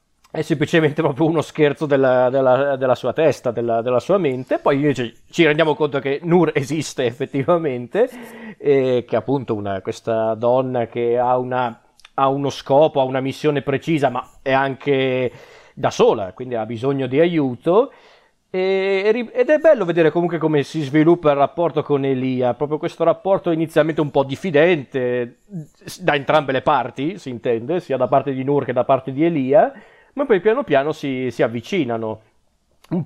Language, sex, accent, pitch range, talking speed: Italian, male, native, 130-165 Hz, 170 wpm